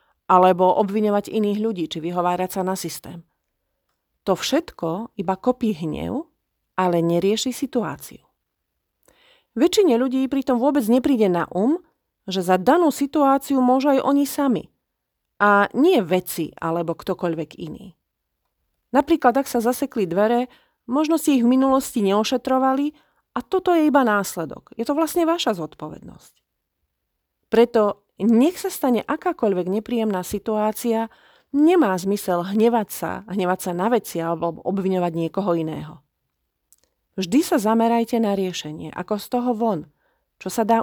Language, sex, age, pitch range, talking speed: Slovak, female, 40-59, 185-265 Hz, 130 wpm